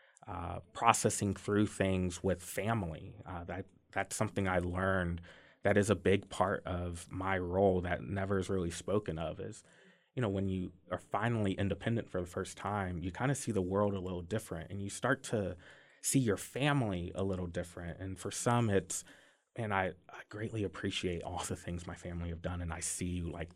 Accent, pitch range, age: American, 90-105 Hz, 30-49